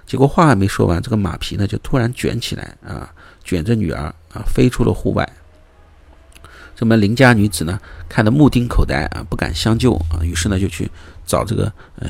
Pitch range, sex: 85-115 Hz, male